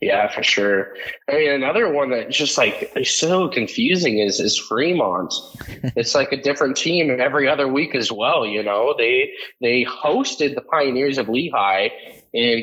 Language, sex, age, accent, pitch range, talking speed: English, male, 20-39, American, 110-140 Hz, 170 wpm